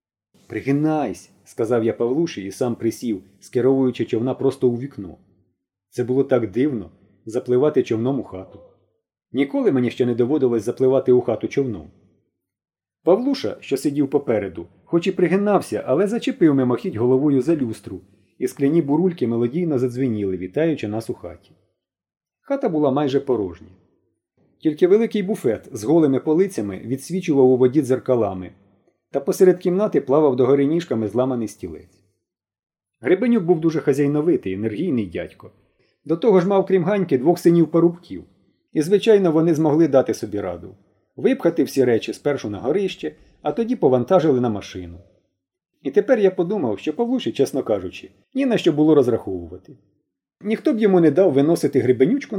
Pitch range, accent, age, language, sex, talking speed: 110-175 Hz, native, 30-49, Ukrainian, male, 145 wpm